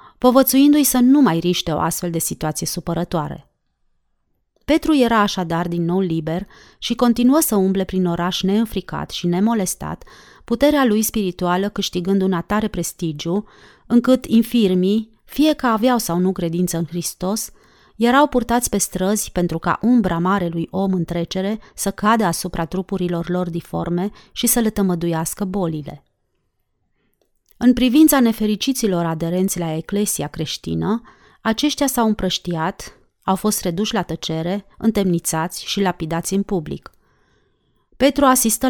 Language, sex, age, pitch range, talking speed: Romanian, female, 30-49, 175-225 Hz, 135 wpm